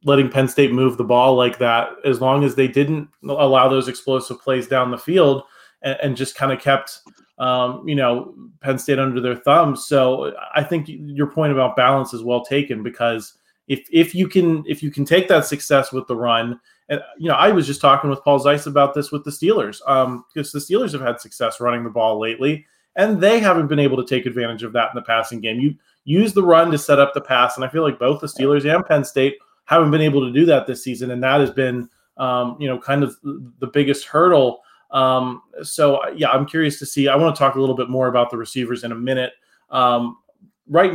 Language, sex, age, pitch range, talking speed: English, male, 20-39, 125-145 Hz, 235 wpm